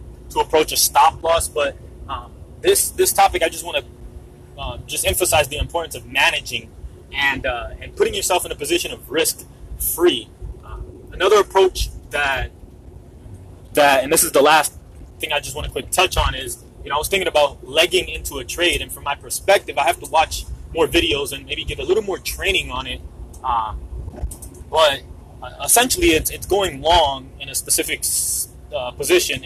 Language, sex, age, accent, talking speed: English, male, 20-39, American, 185 wpm